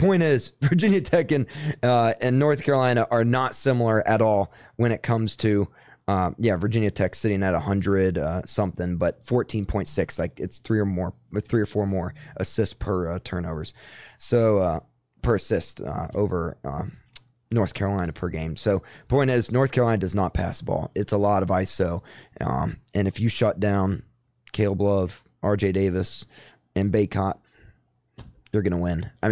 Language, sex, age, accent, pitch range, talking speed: English, male, 20-39, American, 95-120 Hz, 180 wpm